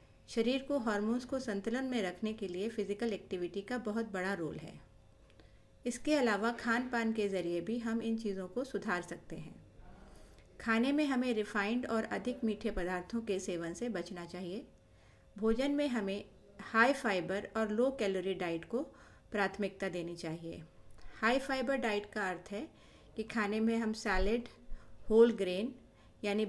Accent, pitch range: native, 195-235 Hz